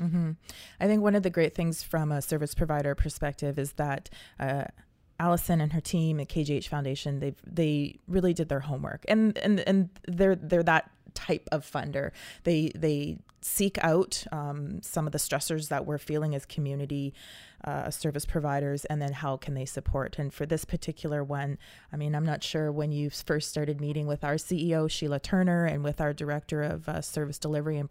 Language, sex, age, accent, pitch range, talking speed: English, female, 20-39, American, 145-180 Hz, 195 wpm